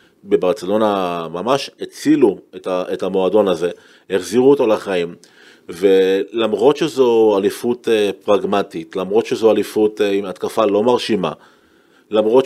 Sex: male